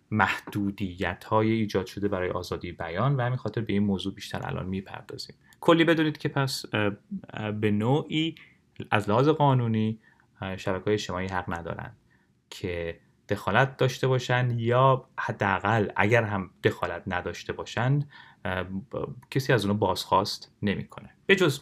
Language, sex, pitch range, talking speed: Persian, male, 95-120 Hz, 130 wpm